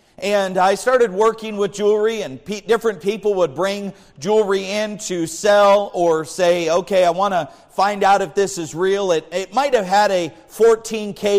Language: English